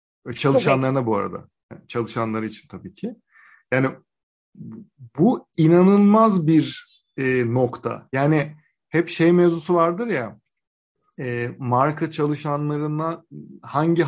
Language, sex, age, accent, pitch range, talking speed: Turkish, male, 50-69, native, 125-160 Hz, 90 wpm